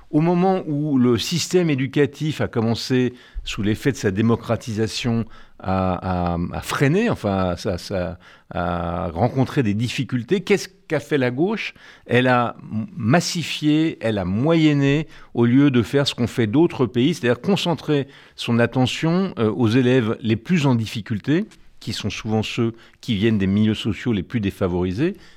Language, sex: French, male